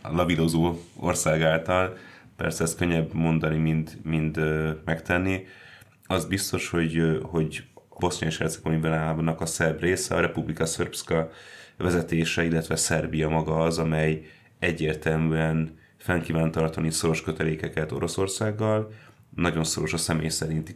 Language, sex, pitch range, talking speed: Hungarian, male, 80-85 Hz, 120 wpm